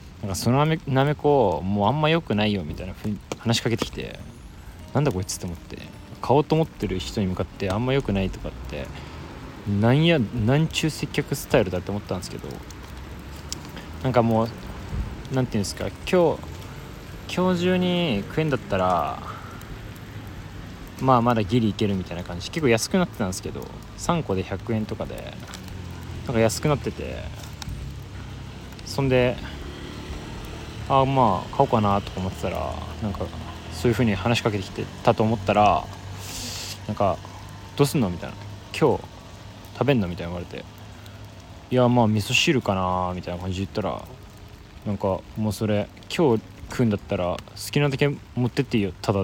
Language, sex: Japanese, male